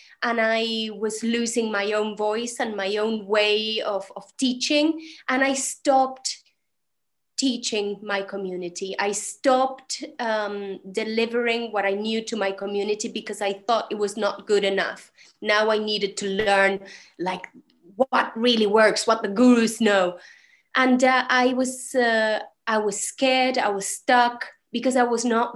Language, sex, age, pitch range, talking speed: English, female, 20-39, 200-265 Hz, 155 wpm